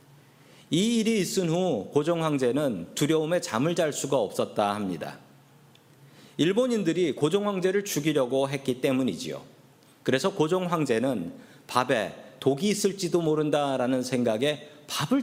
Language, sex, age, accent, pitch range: Korean, male, 40-59, native, 130-185 Hz